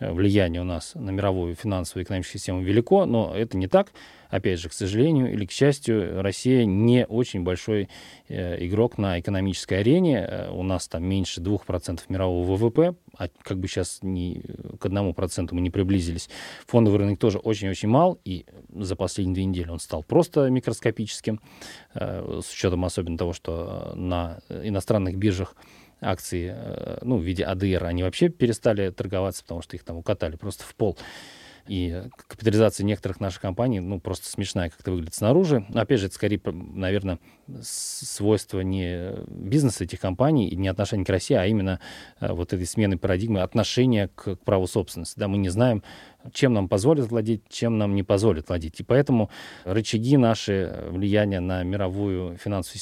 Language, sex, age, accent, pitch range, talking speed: Russian, male, 20-39, native, 95-115 Hz, 160 wpm